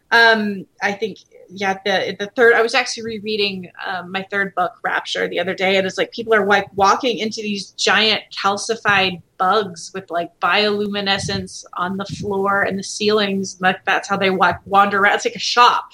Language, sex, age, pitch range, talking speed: English, female, 30-49, 195-240 Hz, 190 wpm